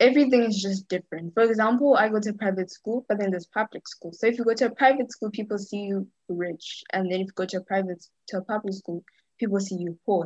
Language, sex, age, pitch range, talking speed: English, female, 20-39, 180-215 Hz, 255 wpm